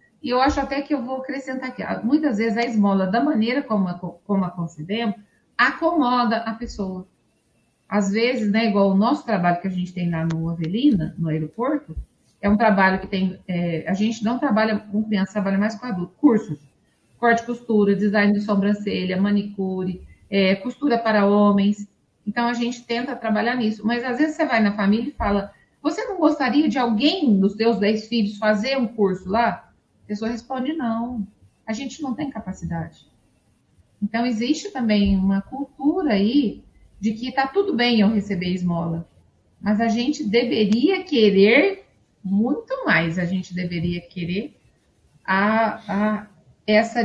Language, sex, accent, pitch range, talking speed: Portuguese, female, Brazilian, 190-245 Hz, 165 wpm